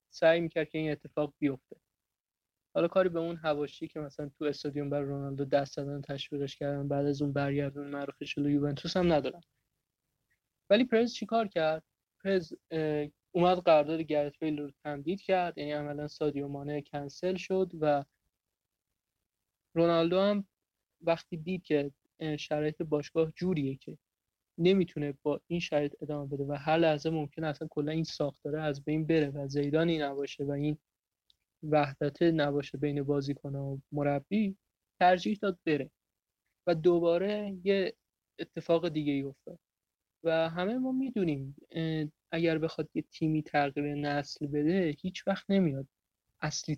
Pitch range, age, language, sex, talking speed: 140-165 Hz, 20-39, Persian, male, 140 wpm